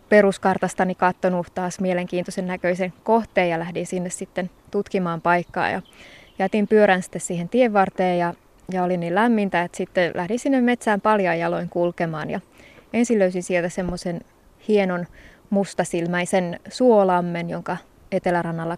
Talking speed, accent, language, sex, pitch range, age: 135 wpm, native, Finnish, female, 175-195 Hz, 20-39